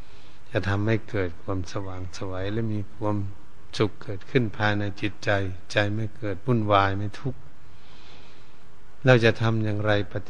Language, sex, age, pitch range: Thai, male, 70-89, 95-110 Hz